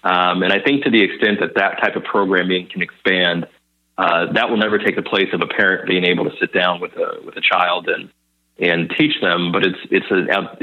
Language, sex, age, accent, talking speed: English, male, 30-49, American, 235 wpm